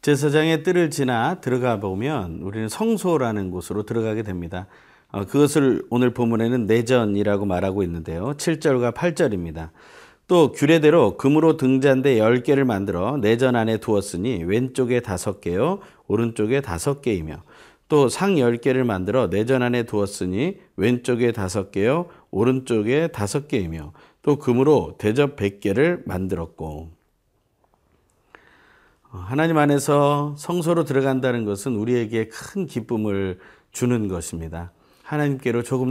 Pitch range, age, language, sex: 100-140 Hz, 40-59, Korean, male